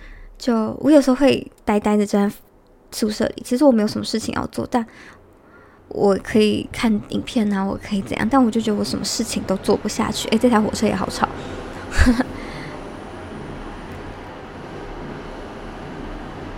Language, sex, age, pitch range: Chinese, male, 20-39, 210-245 Hz